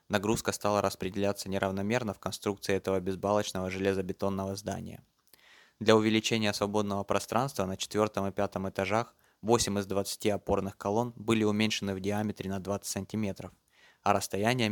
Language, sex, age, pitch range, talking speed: Russian, male, 20-39, 95-105 Hz, 135 wpm